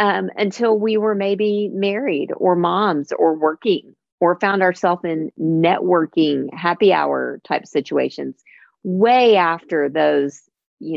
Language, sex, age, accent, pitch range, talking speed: English, female, 40-59, American, 165-205 Hz, 125 wpm